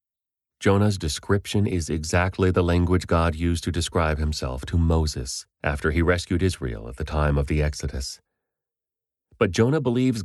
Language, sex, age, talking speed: English, male, 30-49, 150 wpm